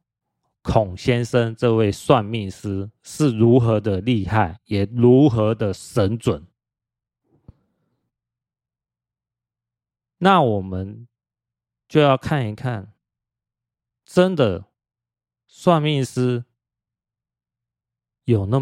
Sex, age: male, 30-49